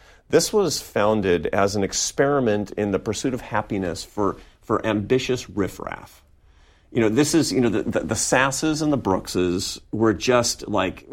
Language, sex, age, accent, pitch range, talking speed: English, male, 40-59, American, 100-135 Hz, 165 wpm